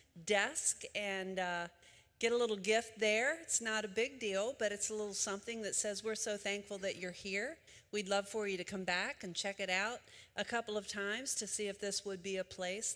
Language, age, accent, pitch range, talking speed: English, 50-69, American, 180-215 Hz, 225 wpm